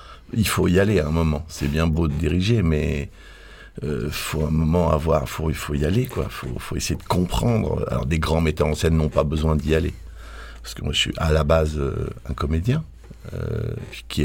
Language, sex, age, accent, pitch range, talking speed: French, male, 50-69, French, 75-90 Hz, 225 wpm